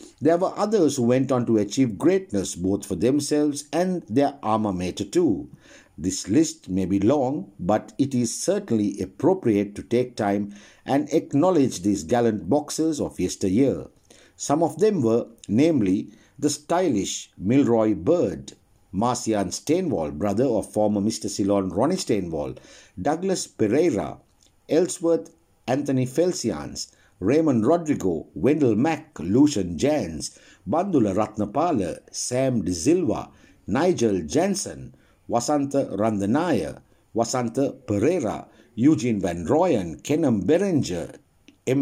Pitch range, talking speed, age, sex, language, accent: 105-170 Hz, 115 wpm, 60-79, male, English, Indian